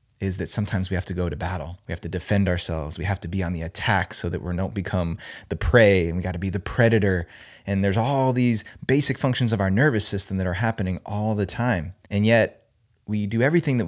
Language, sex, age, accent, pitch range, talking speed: English, male, 20-39, American, 90-115 Hz, 245 wpm